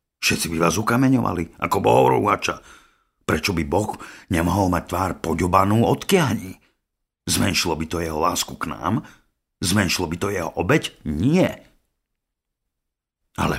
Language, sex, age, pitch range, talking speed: Slovak, male, 50-69, 70-95 Hz, 130 wpm